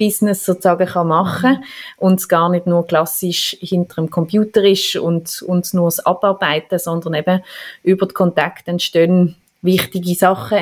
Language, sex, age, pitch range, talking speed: German, female, 30-49, 180-205 Hz, 145 wpm